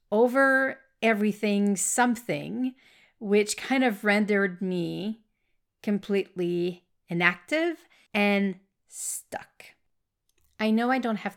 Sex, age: female, 40-59